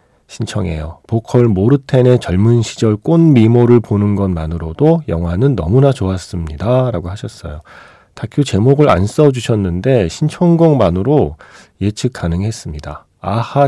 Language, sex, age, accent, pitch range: Korean, male, 40-59, native, 90-130 Hz